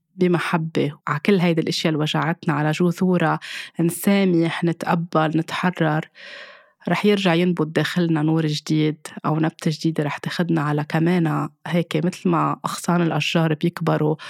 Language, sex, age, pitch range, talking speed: Arabic, female, 20-39, 155-180 Hz, 130 wpm